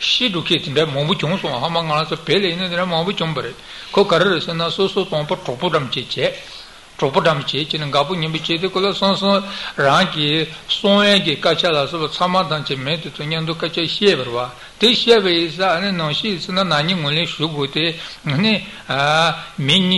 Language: Italian